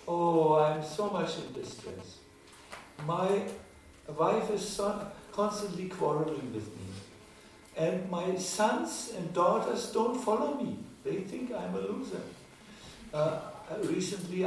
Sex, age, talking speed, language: male, 60-79, 115 wpm, English